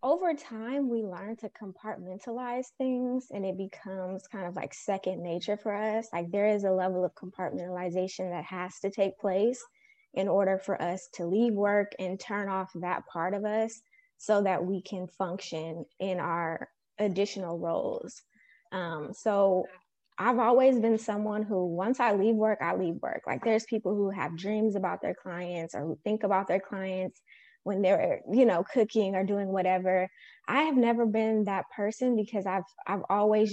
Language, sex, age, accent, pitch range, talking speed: English, female, 20-39, American, 185-220 Hz, 175 wpm